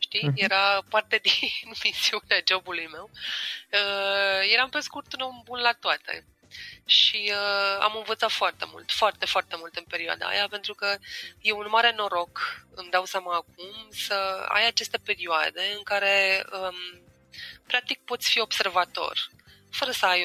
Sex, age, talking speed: female, 20-39, 155 wpm